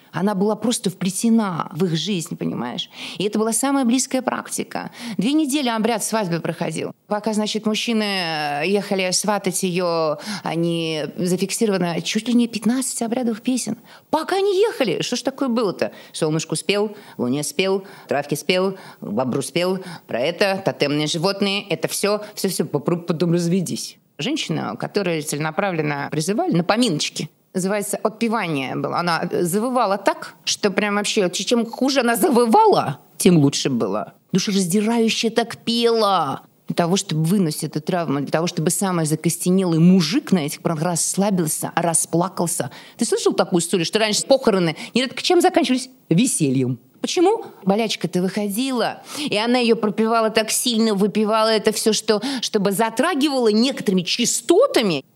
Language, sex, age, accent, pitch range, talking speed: Russian, female, 20-39, native, 175-230 Hz, 140 wpm